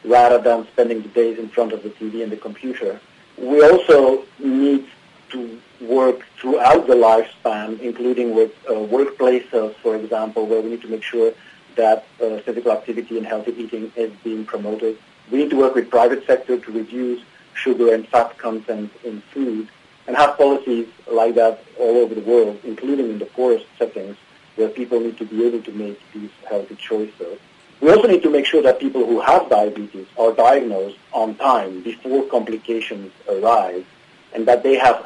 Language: English